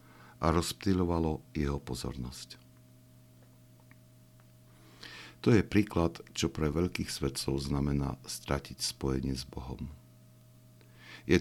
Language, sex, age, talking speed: Slovak, male, 60-79, 90 wpm